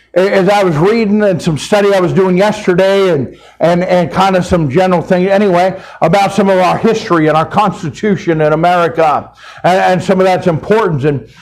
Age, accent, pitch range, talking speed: 50-69, American, 170-195 Hz, 195 wpm